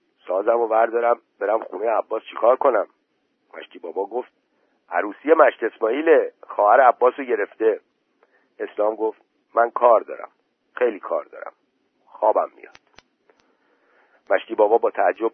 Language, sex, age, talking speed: Persian, male, 50-69, 120 wpm